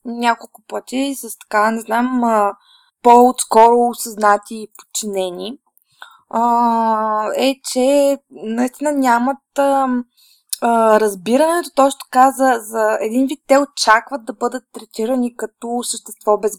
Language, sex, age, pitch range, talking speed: Bulgarian, female, 20-39, 215-270 Hz, 105 wpm